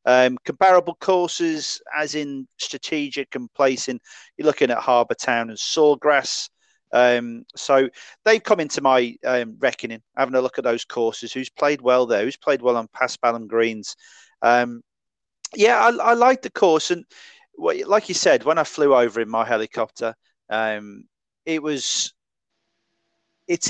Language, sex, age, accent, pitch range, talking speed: English, male, 40-59, British, 115-170 Hz, 155 wpm